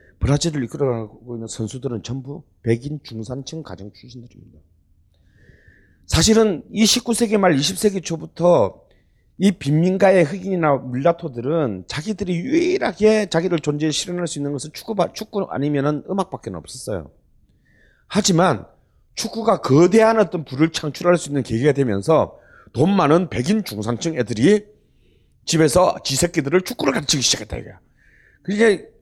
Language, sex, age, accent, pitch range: Korean, male, 40-59, native, 135-210 Hz